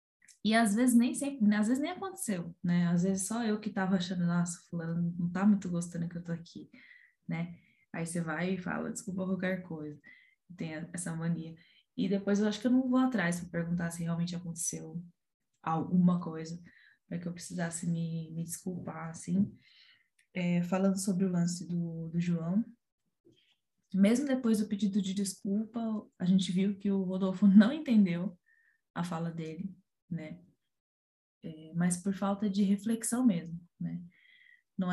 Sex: female